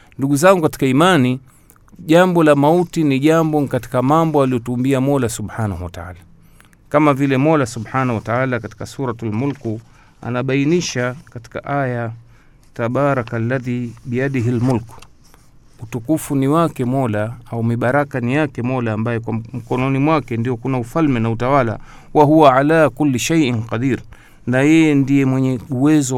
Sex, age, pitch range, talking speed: male, 50-69, 115-145 Hz, 135 wpm